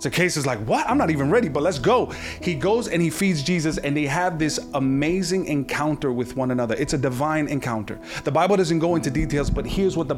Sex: male